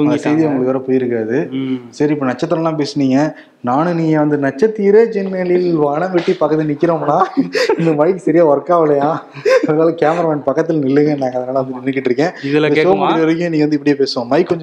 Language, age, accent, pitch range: Tamil, 20-39, native, 135-170 Hz